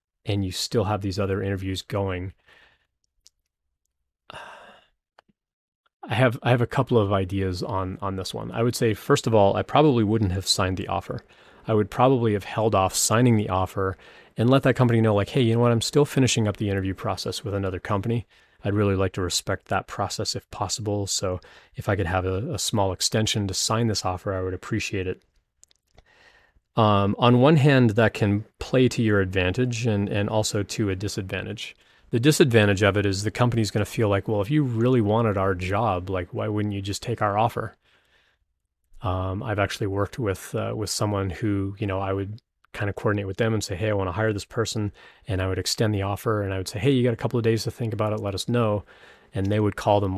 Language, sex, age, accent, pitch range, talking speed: English, male, 30-49, American, 95-115 Hz, 220 wpm